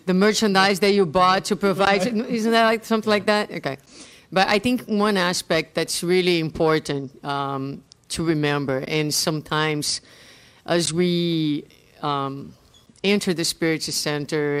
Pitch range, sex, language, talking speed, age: 145-175 Hz, female, English, 140 wpm, 50-69